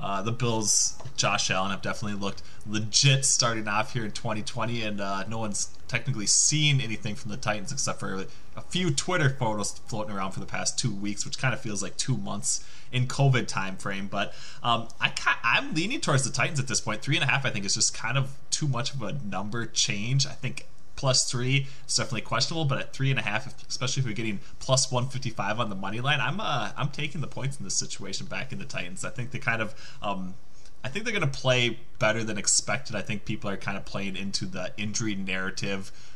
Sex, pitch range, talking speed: male, 100-130 Hz, 225 wpm